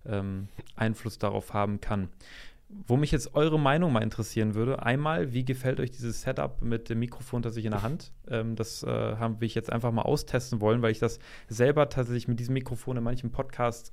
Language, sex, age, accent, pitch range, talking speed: German, male, 30-49, German, 115-130 Hz, 205 wpm